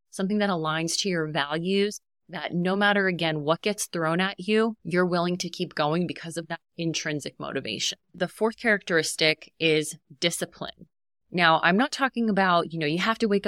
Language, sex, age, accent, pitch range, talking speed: English, female, 30-49, American, 160-200 Hz, 185 wpm